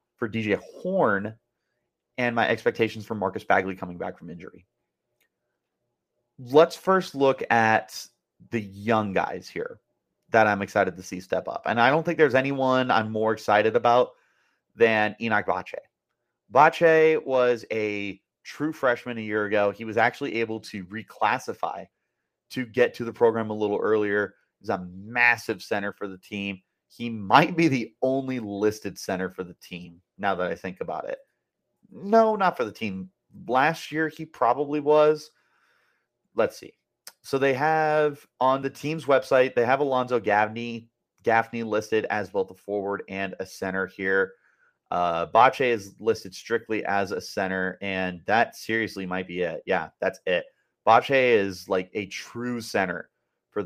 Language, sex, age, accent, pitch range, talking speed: English, male, 30-49, American, 100-130 Hz, 160 wpm